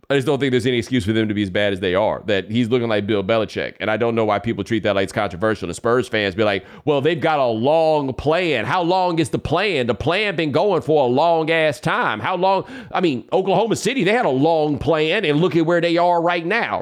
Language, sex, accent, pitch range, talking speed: English, male, American, 115-160 Hz, 275 wpm